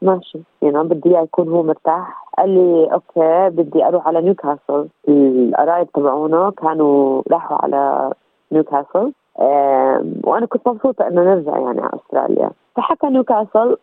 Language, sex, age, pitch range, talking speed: Arabic, female, 30-49, 145-180 Hz, 135 wpm